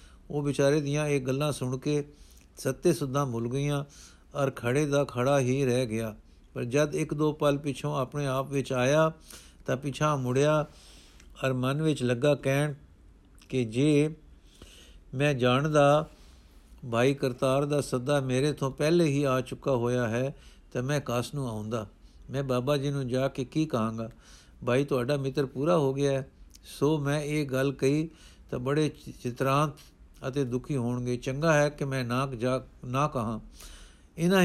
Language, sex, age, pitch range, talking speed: Punjabi, male, 50-69, 125-145 Hz, 155 wpm